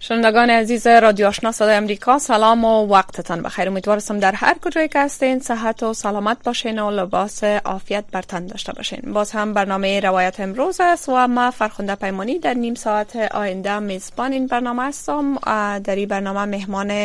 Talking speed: 170 wpm